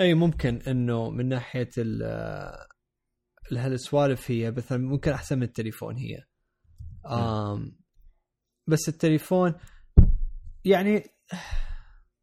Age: 20-39